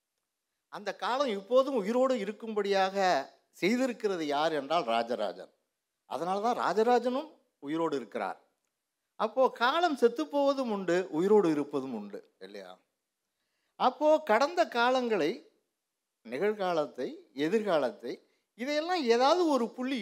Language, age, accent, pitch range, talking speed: Tamil, 60-79, native, 175-260 Hz, 95 wpm